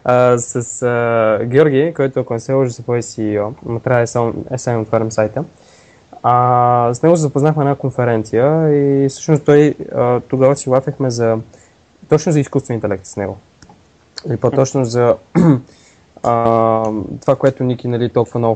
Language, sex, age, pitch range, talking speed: Bulgarian, male, 20-39, 115-145 Hz, 160 wpm